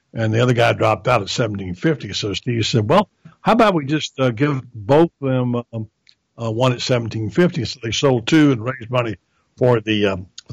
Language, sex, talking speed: English, male, 220 wpm